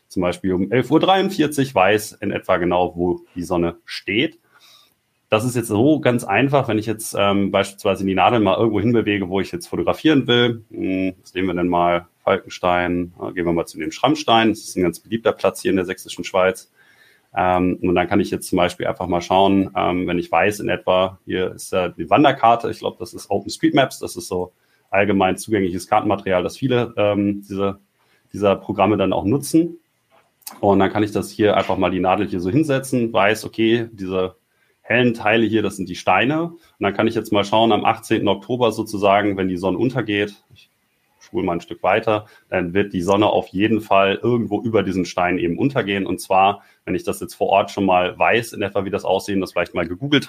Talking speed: 210 wpm